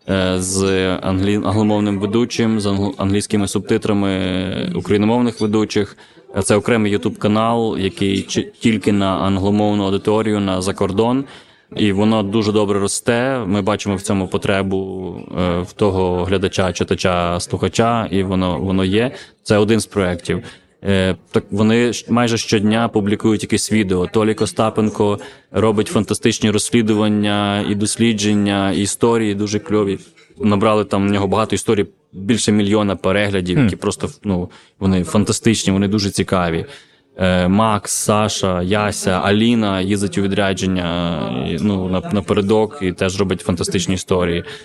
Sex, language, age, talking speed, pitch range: male, Ukrainian, 20-39, 125 wpm, 95-110 Hz